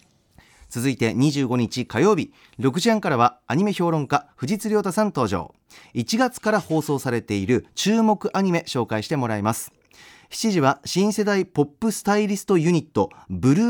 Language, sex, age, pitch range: Japanese, male, 40-59, 135-205 Hz